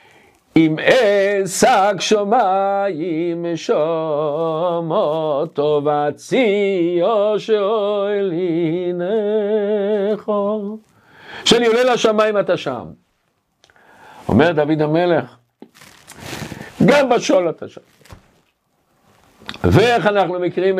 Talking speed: 80 wpm